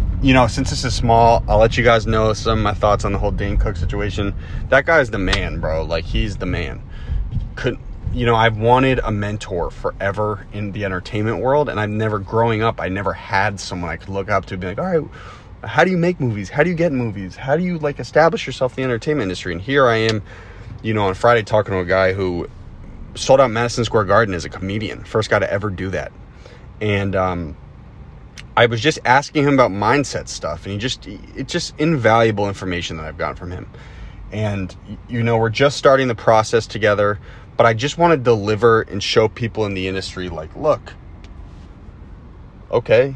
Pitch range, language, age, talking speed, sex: 95-120 Hz, English, 30-49, 215 wpm, male